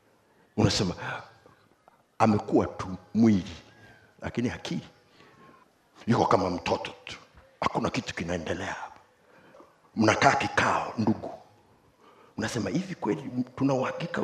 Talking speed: 90 wpm